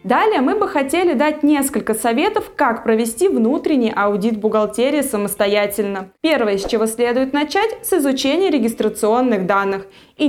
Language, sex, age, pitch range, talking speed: Russian, female, 20-39, 220-295 Hz, 135 wpm